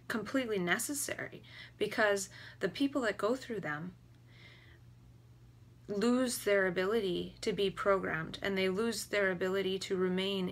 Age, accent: 30-49, American